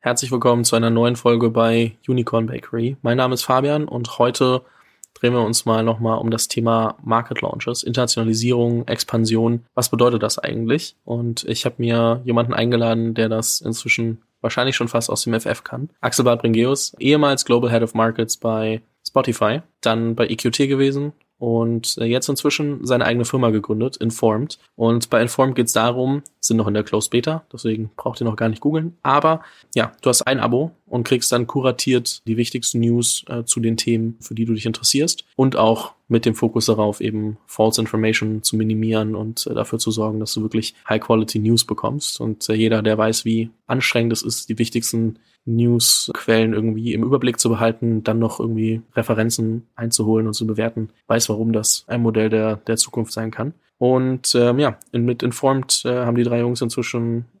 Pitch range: 110-125 Hz